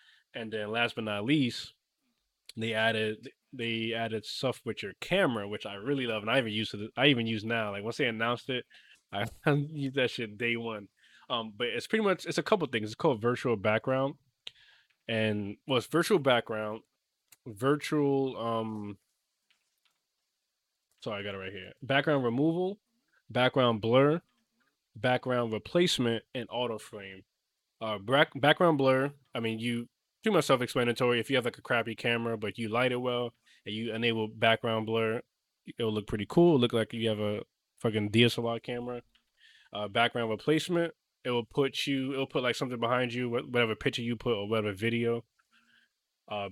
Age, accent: 20-39, American